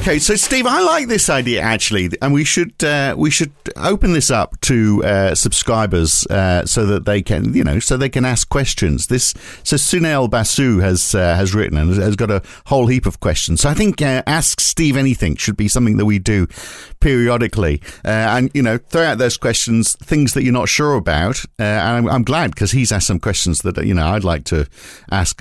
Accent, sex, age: British, male, 50-69